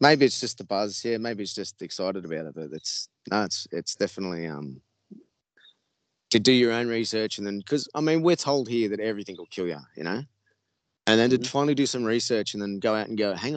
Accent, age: Australian, 20-39